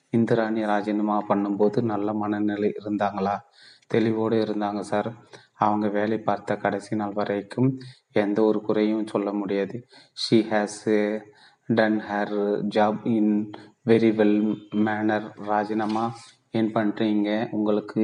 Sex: male